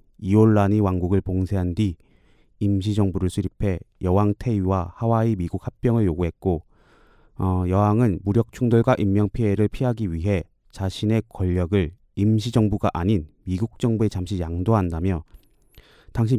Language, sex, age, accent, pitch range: Korean, male, 30-49, native, 90-115 Hz